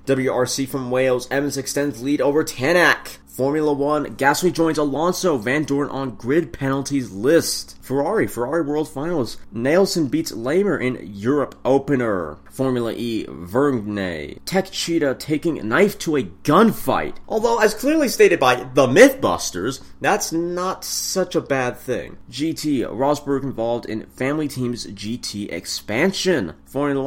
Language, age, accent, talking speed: English, 30-49, American, 135 wpm